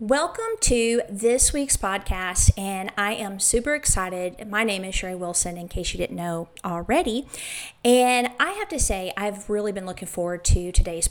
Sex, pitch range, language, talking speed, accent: female, 190-245 Hz, English, 180 wpm, American